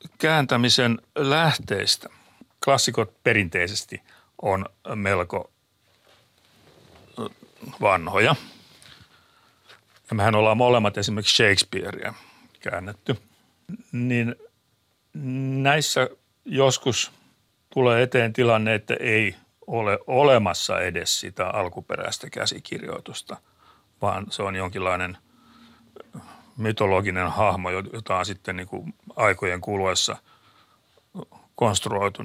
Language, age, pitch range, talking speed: Finnish, 60-79, 95-120 Hz, 75 wpm